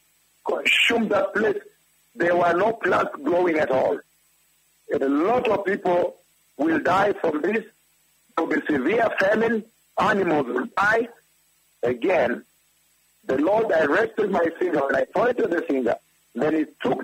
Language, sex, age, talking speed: English, male, 60-79, 150 wpm